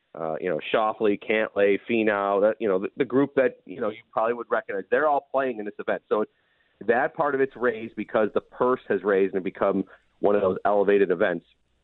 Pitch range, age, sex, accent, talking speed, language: 110-145 Hz, 40-59, male, American, 215 wpm, English